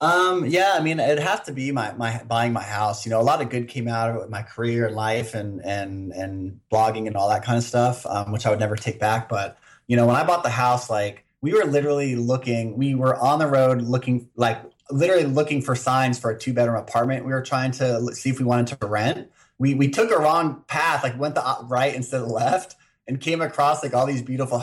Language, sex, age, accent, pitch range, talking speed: English, male, 30-49, American, 115-135 Hz, 250 wpm